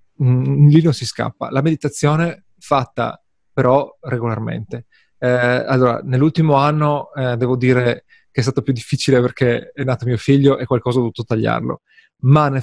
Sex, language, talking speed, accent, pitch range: male, Italian, 155 wpm, native, 115-150 Hz